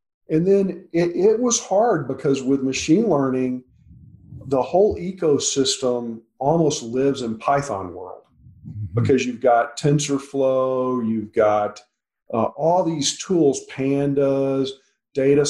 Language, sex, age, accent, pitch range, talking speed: English, male, 50-69, American, 120-145 Hz, 115 wpm